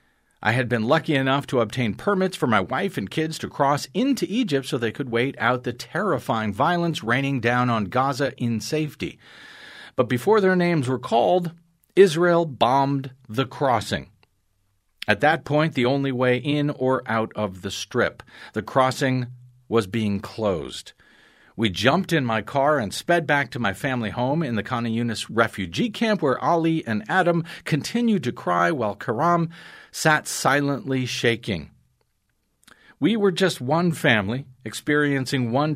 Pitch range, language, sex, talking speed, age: 120-155 Hz, English, male, 160 wpm, 50-69